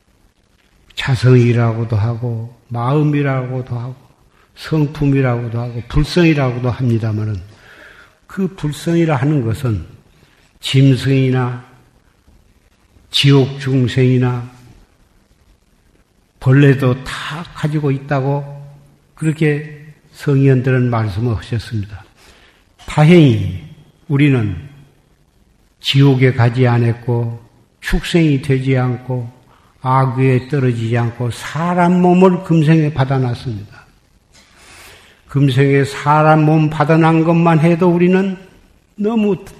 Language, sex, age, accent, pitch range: Korean, male, 50-69, native, 120-150 Hz